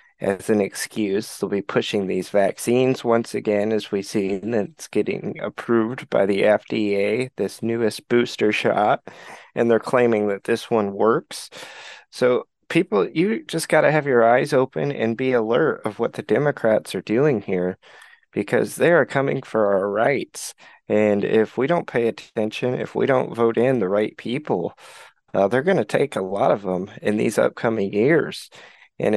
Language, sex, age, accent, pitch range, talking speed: English, male, 20-39, American, 105-125 Hz, 175 wpm